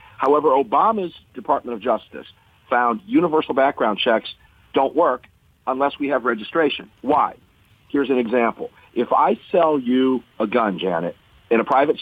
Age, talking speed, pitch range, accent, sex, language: 50-69, 145 wpm, 110-160 Hz, American, male, English